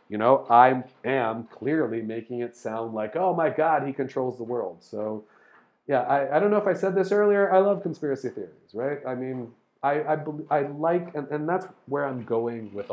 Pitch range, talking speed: 115-155 Hz, 210 wpm